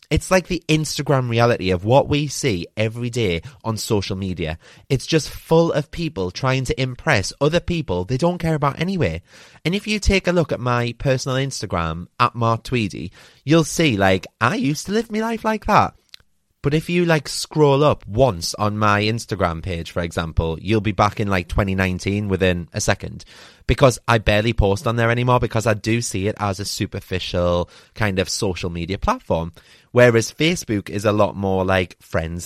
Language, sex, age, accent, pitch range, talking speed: English, male, 30-49, British, 100-150 Hz, 190 wpm